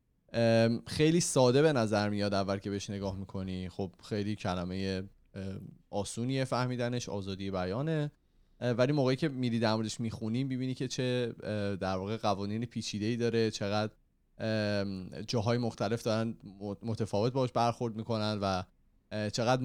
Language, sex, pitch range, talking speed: Persian, male, 100-120 Hz, 130 wpm